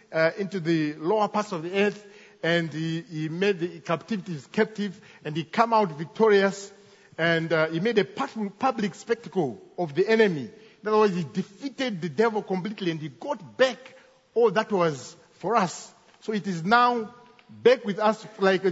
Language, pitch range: English, 175-220 Hz